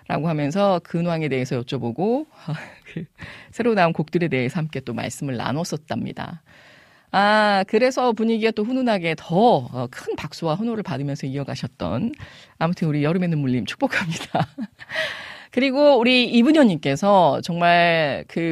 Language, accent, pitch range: Korean, native, 150-230 Hz